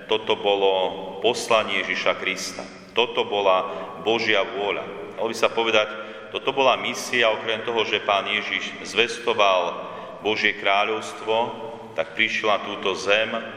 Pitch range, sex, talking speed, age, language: 95-110 Hz, male, 130 wpm, 40-59, Slovak